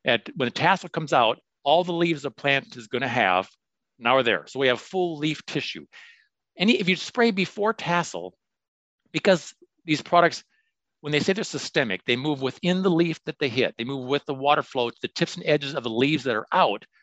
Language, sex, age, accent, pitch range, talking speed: English, male, 50-69, American, 125-175 Hz, 215 wpm